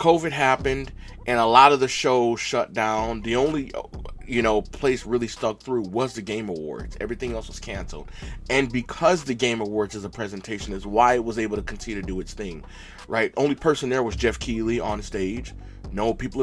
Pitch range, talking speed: 100-125 Hz, 205 wpm